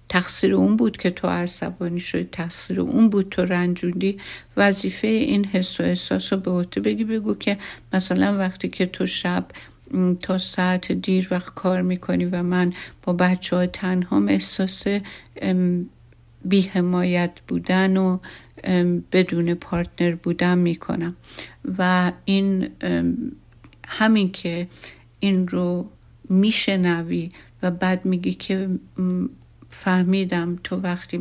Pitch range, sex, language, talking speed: 175-200 Hz, female, Persian, 115 wpm